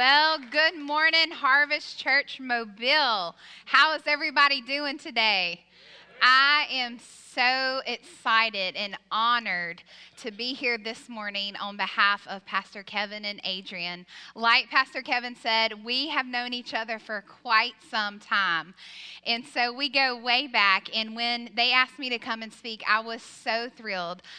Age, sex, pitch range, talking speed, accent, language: 10-29, female, 210-255 Hz, 155 wpm, American, English